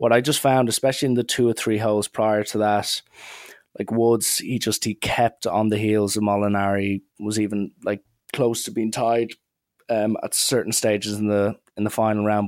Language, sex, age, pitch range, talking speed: English, male, 20-39, 100-110 Hz, 200 wpm